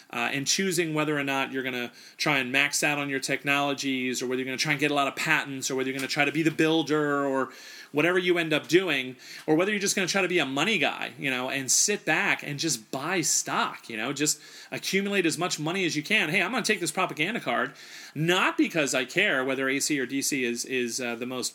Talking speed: 265 wpm